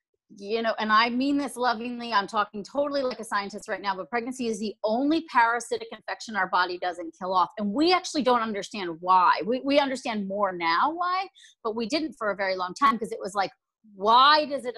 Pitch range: 180-270 Hz